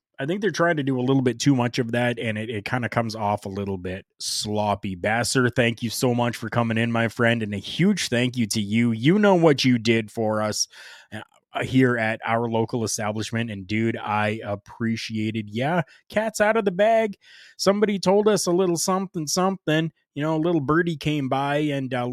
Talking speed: 210 wpm